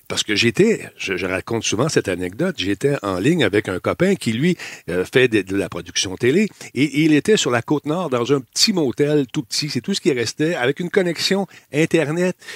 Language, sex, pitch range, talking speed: French, male, 110-155 Hz, 215 wpm